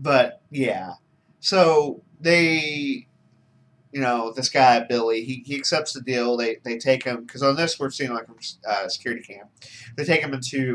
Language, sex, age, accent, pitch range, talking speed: English, male, 30-49, American, 110-135 Hz, 180 wpm